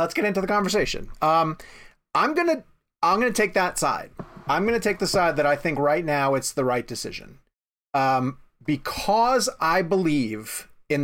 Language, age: English, 30-49